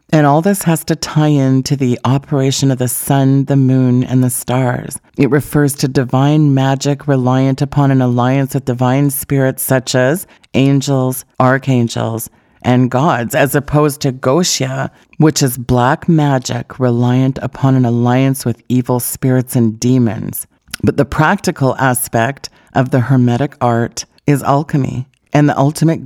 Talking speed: 150 wpm